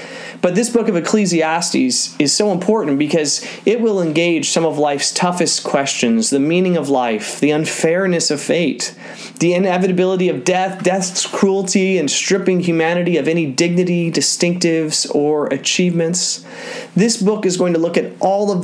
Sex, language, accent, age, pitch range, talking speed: male, English, American, 30-49, 140-180 Hz, 160 wpm